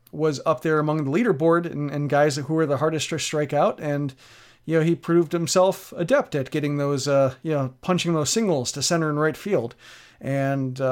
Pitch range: 140-175 Hz